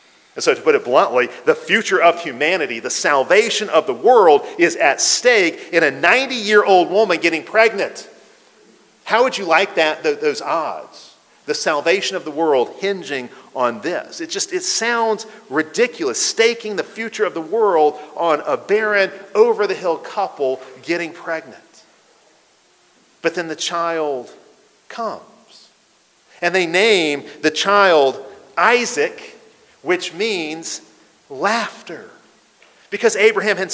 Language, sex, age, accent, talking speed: English, male, 40-59, American, 130 wpm